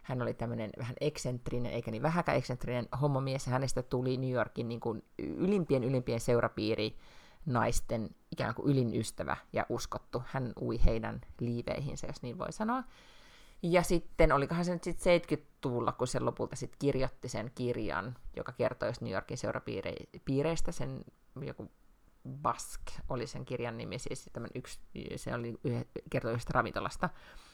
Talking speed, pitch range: 140 wpm, 120-150 Hz